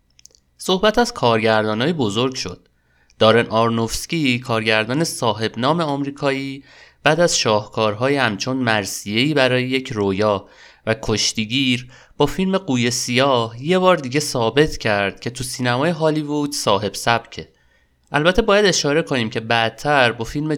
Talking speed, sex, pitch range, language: 130 wpm, male, 110-150 Hz, Persian